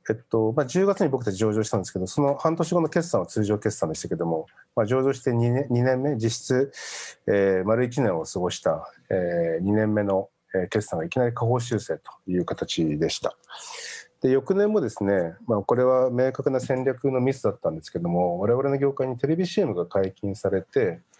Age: 40-59